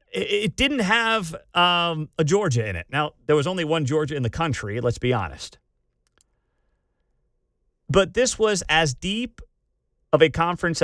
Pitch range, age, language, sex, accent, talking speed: 125-180 Hz, 40-59, English, male, American, 155 wpm